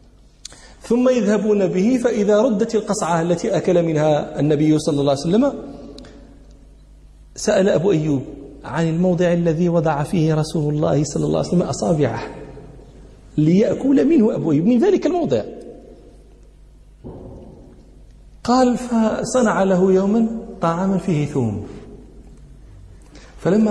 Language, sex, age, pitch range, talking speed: Arabic, male, 40-59, 140-195 Hz, 110 wpm